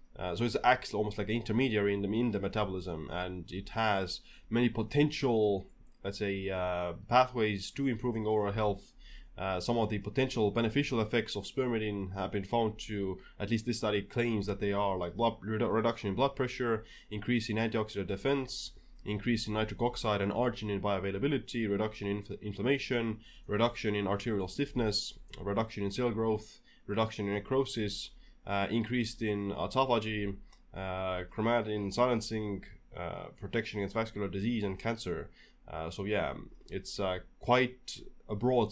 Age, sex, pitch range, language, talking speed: 20-39, male, 100-120 Hz, English, 160 wpm